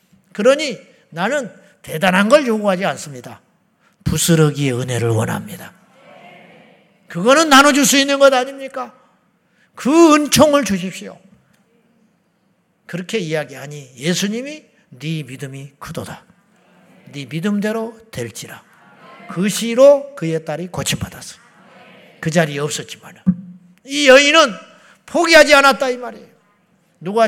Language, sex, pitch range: Korean, male, 185-265 Hz